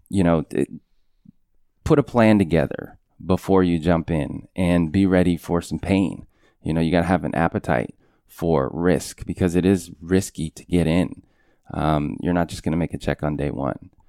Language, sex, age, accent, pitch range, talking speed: English, male, 20-39, American, 80-100 Hz, 190 wpm